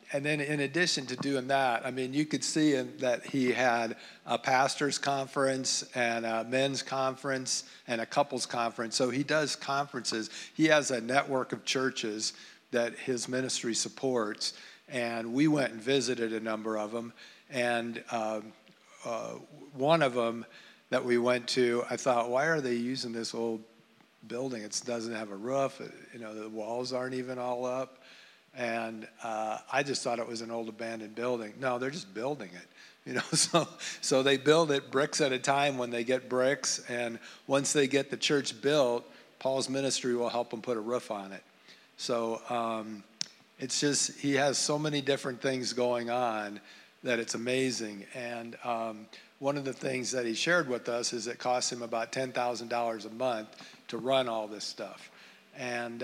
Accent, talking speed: American, 180 wpm